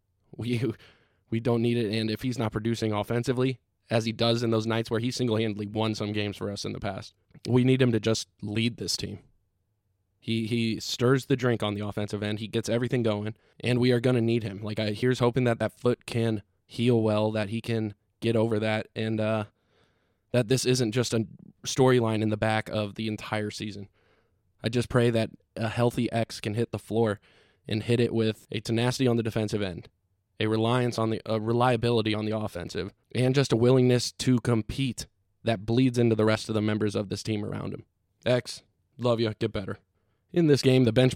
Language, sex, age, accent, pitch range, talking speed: English, male, 20-39, American, 105-125 Hz, 215 wpm